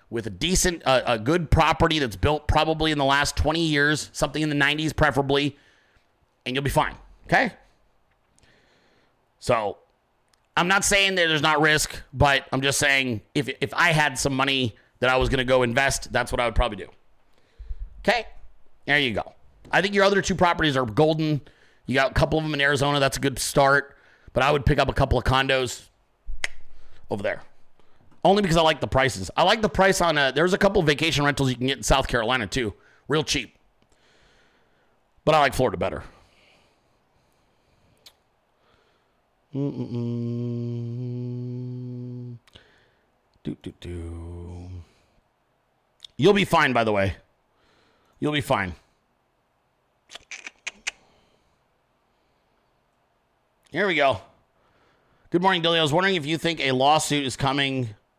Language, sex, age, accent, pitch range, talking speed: English, male, 30-49, American, 125-155 Hz, 150 wpm